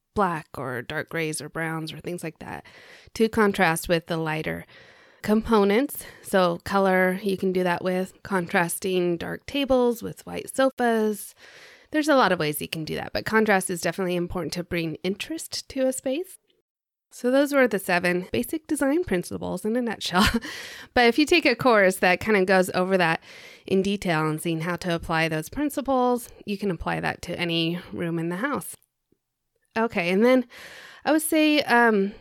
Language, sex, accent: English, female, American